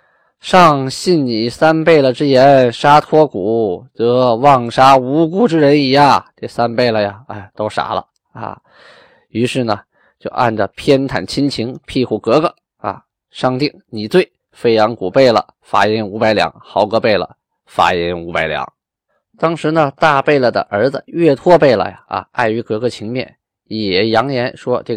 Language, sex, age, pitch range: Chinese, male, 20-39, 110-150 Hz